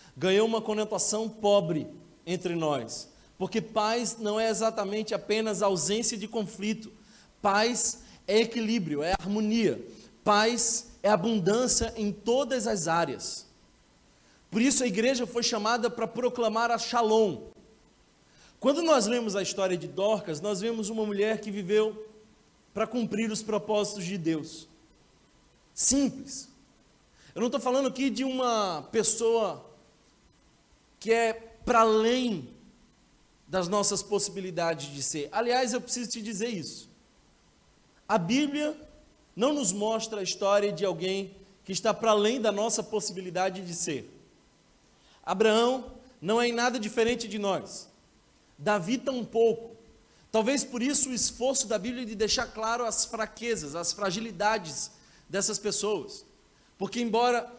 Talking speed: 135 wpm